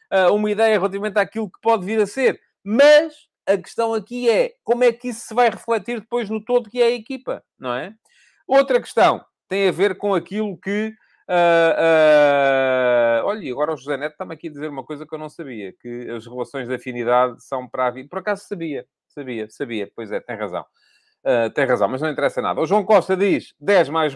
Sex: male